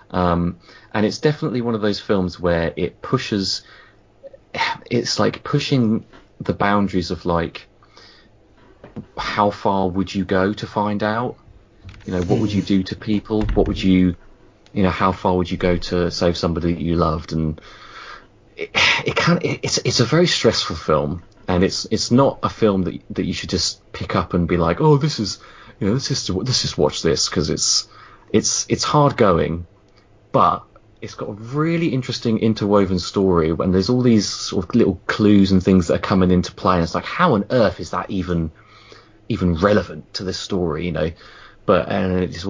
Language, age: English, 30-49